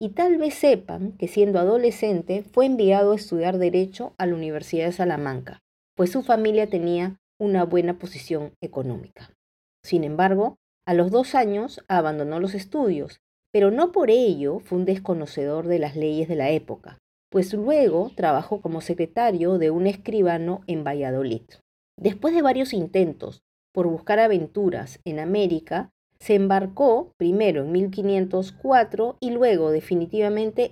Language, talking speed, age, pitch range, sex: Spanish, 145 wpm, 40-59, 165-205 Hz, female